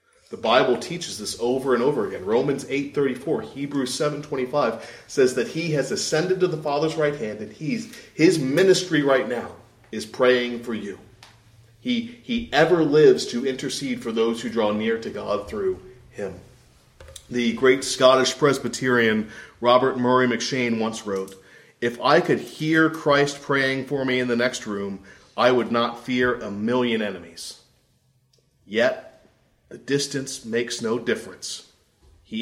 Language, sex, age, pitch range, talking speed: English, male, 40-59, 115-140 Hz, 150 wpm